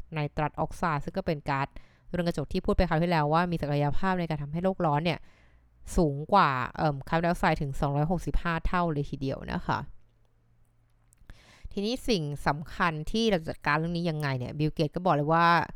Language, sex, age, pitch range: Thai, female, 20-39, 150-185 Hz